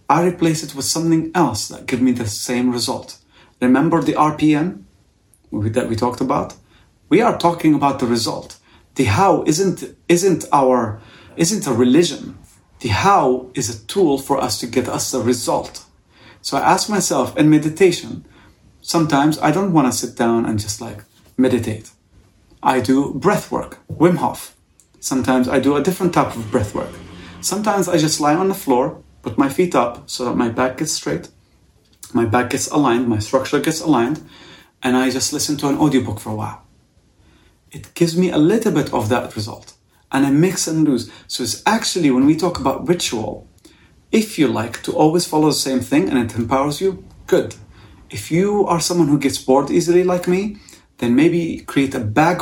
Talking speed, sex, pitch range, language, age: 185 wpm, male, 115-160 Hz, English, 40-59